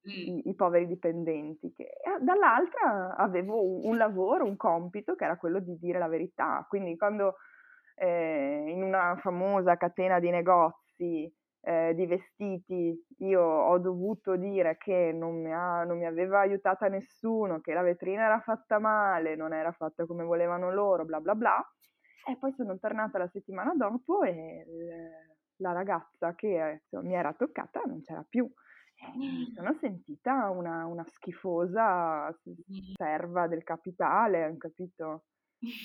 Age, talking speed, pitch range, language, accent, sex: 20-39, 145 wpm, 170-210 Hz, Italian, native, female